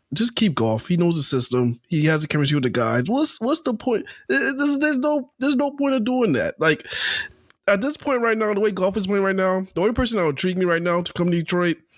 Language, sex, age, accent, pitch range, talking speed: English, male, 20-39, American, 150-215 Hz, 260 wpm